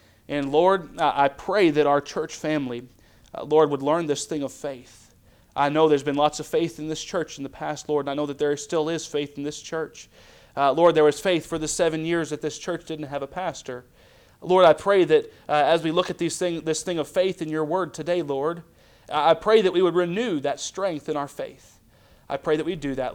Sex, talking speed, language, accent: male, 240 wpm, English, American